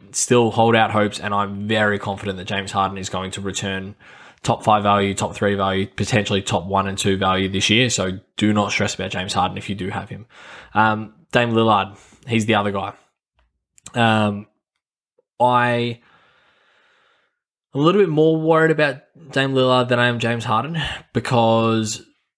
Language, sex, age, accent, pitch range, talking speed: English, male, 10-29, Australian, 100-110 Hz, 170 wpm